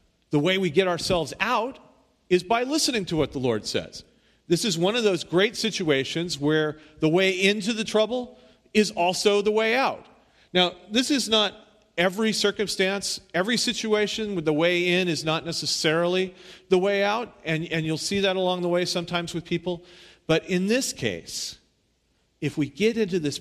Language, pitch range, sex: English, 115-180 Hz, male